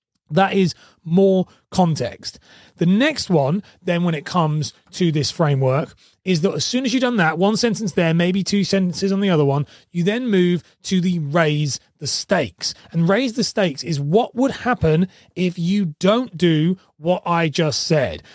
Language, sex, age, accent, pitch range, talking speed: English, male, 30-49, British, 155-195 Hz, 185 wpm